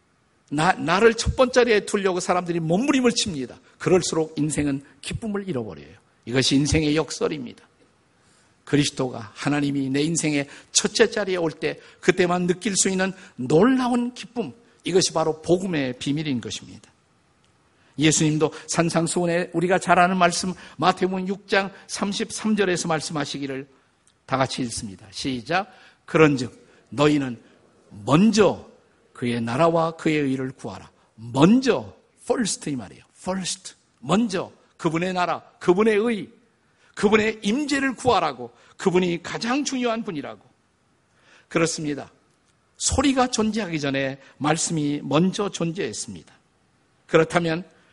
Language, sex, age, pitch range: Korean, male, 50-69, 145-210 Hz